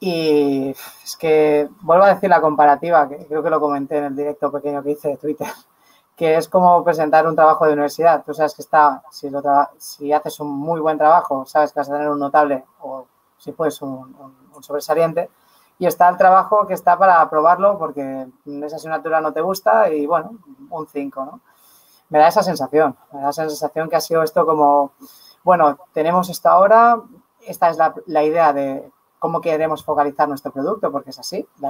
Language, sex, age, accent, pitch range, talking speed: English, female, 30-49, Spanish, 140-160 Hz, 205 wpm